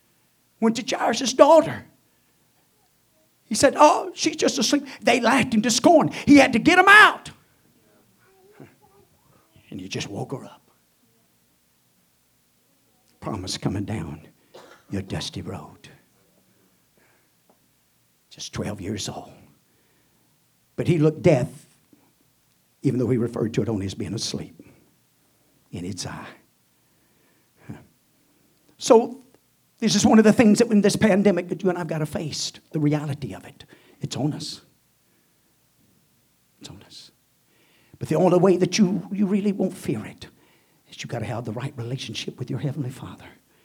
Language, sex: English, male